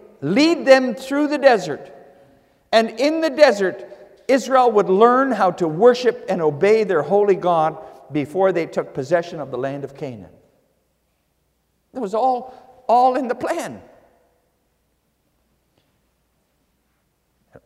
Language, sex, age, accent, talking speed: English, male, 50-69, American, 120 wpm